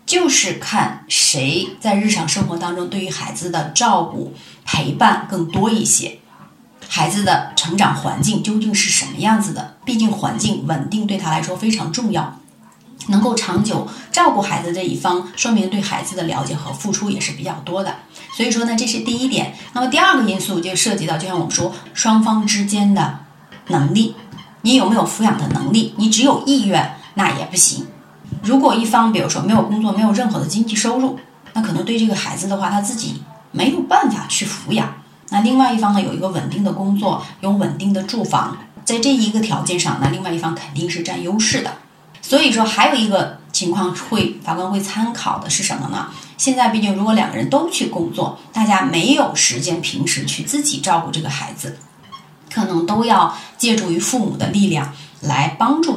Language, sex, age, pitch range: Chinese, female, 30-49, 175-225 Hz